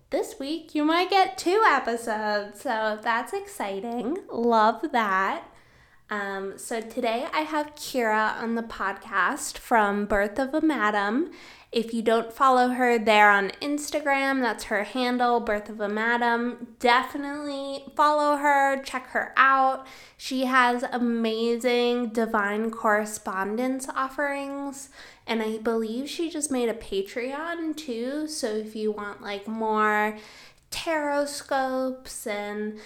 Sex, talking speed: female, 130 wpm